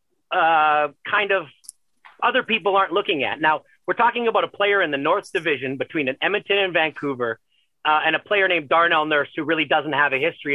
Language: English